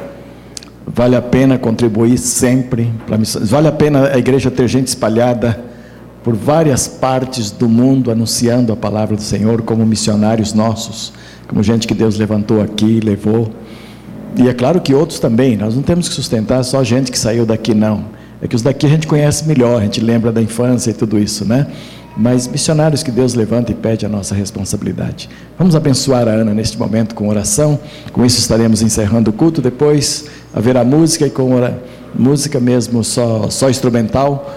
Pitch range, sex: 110-130 Hz, male